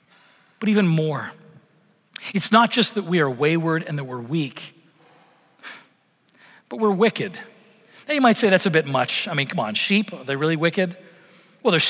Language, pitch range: English, 170-225 Hz